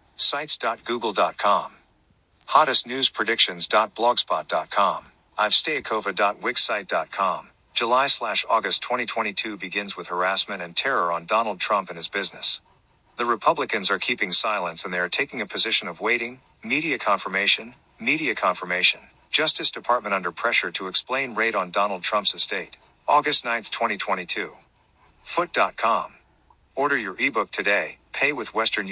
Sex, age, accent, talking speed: male, 50-69, American, 120 wpm